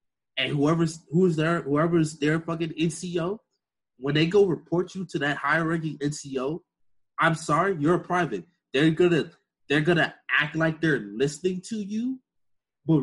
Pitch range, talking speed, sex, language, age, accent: 130-165 Hz, 155 wpm, male, English, 20-39, American